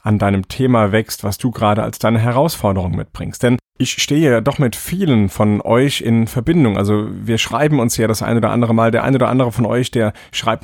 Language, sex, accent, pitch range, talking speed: German, male, German, 105-130 Hz, 225 wpm